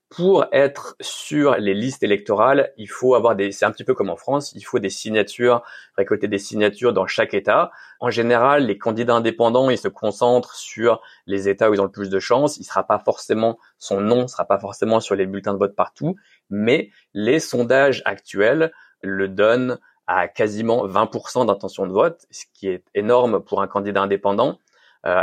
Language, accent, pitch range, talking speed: French, French, 105-135 Hz, 195 wpm